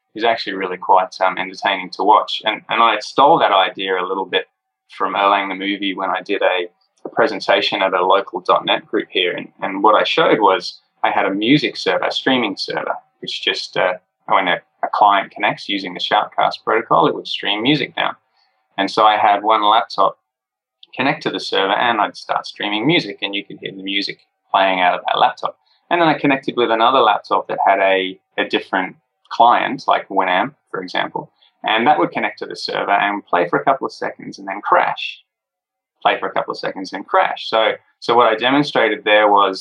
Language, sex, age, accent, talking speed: English, male, 20-39, Australian, 210 wpm